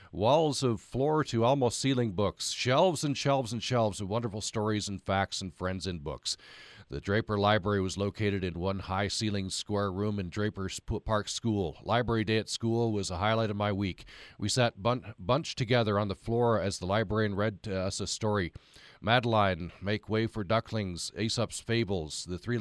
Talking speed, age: 185 wpm, 50-69